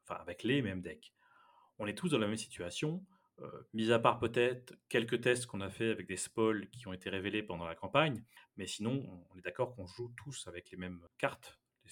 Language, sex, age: French, male, 30-49